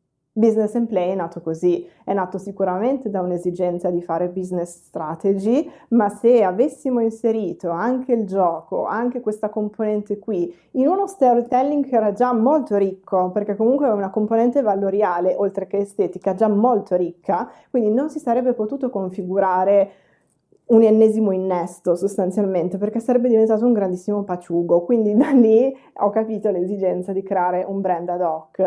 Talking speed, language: 155 wpm, Italian